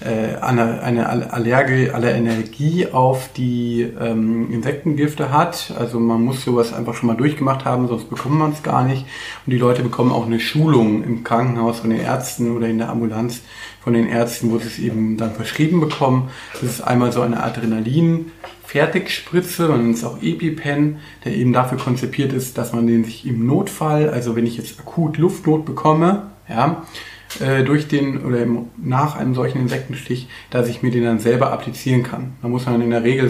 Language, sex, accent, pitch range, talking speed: German, male, German, 115-140 Hz, 185 wpm